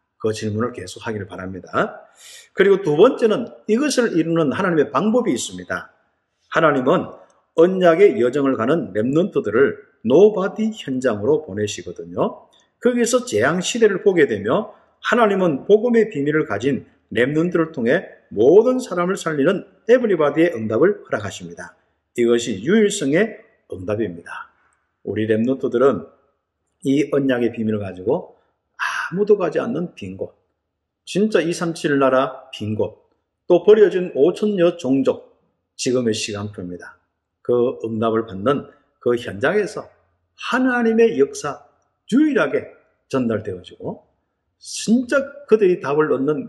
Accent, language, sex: native, Korean, male